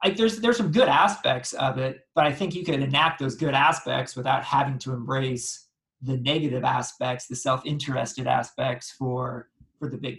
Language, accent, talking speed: English, American, 185 wpm